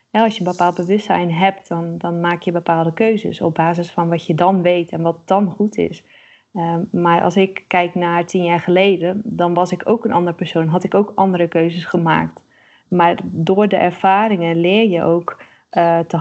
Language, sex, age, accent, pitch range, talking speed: Dutch, female, 20-39, Dutch, 175-205 Hz, 195 wpm